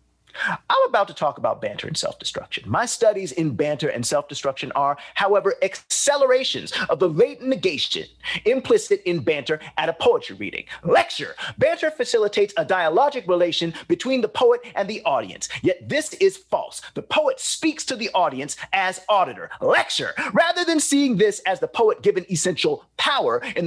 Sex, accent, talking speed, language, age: male, American, 160 wpm, English, 30-49